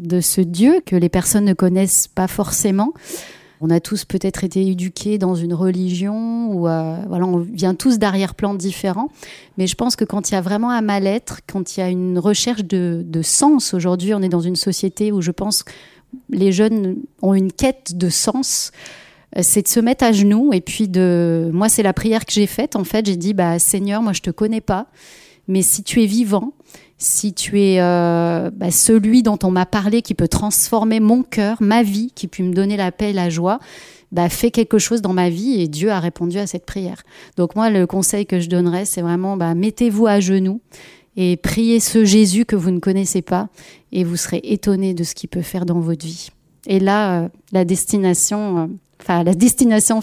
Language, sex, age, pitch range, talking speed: French, female, 30-49, 180-215 Hz, 215 wpm